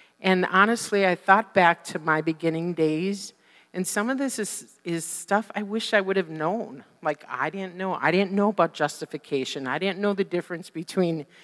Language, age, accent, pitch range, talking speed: English, 50-69, American, 155-190 Hz, 195 wpm